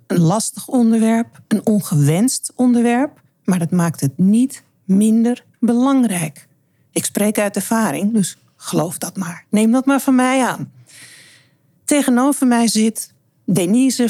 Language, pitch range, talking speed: Dutch, 170-235 Hz, 130 wpm